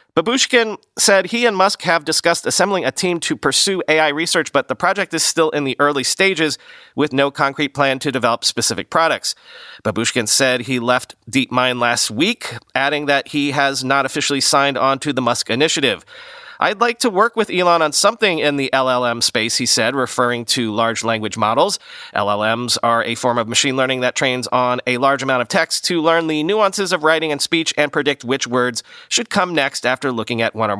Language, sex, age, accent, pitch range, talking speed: English, male, 40-59, American, 130-175 Hz, 205 wpm